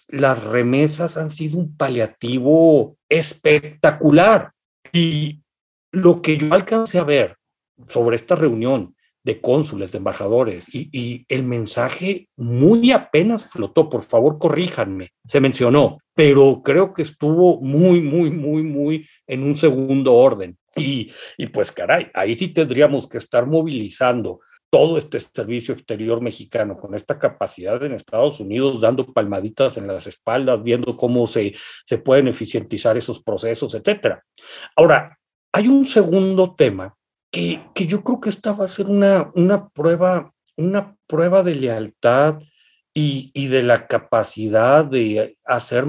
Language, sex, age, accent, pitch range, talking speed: Spanish, male, 50-69, Mexican, 125-175 Hz, 140 wpm